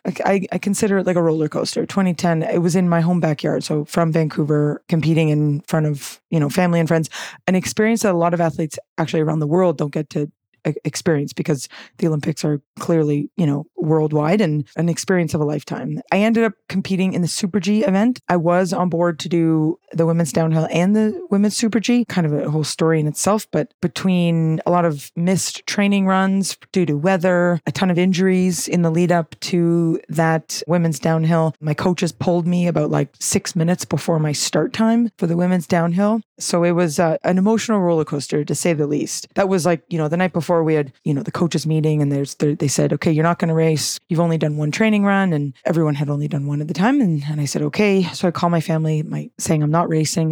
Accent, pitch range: American, 155-185 Hz